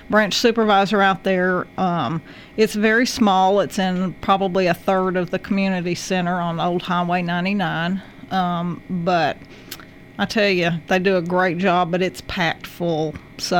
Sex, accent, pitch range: female, American, 175-200 Hz